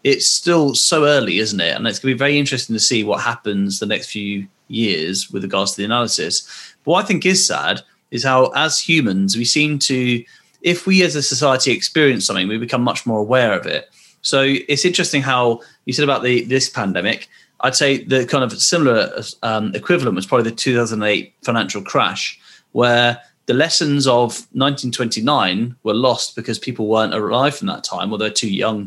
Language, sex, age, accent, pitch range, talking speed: English, male, 30-49, British, 110-135 Hz, 190 wpm